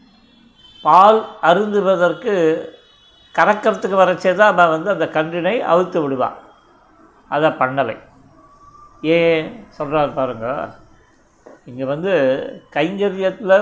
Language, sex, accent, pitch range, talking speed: Tamil, male, native, 160-195 Hz, 85 wpm